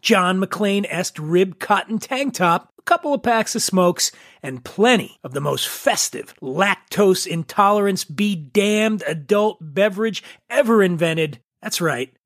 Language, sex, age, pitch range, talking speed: English, male, 30-49, 170-220 Hz, 135 wpm